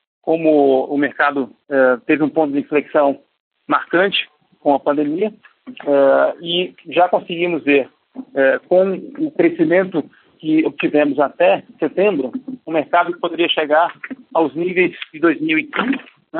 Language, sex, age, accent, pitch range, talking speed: Portuguese, male, 50-69, Brazilian, 145-195 Hz, 125 wpm